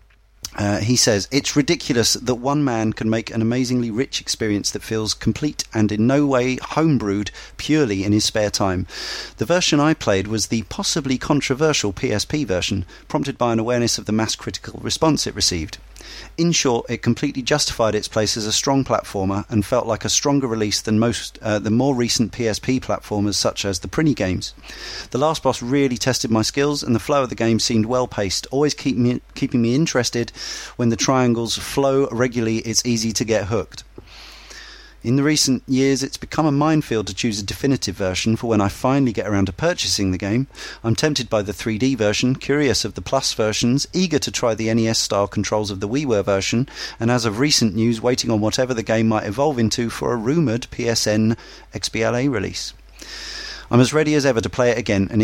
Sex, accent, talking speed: male, British, 200 wpm